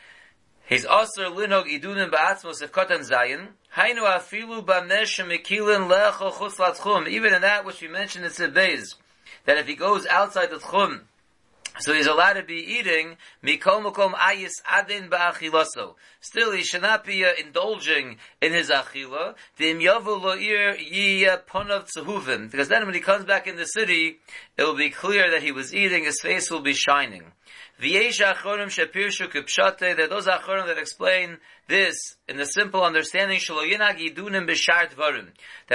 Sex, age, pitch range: male, 40-59, 160-200 Hz